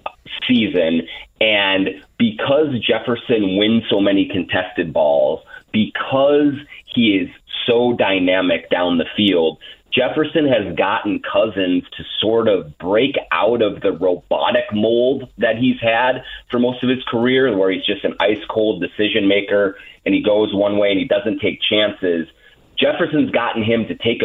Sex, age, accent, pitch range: male, 30-49, American, 95-145 Hz